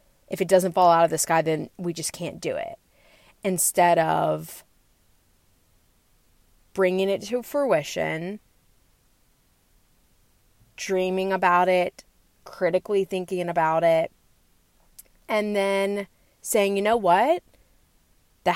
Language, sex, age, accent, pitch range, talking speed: English, female, 20-39, American, 165-205 Hz, 110 wpm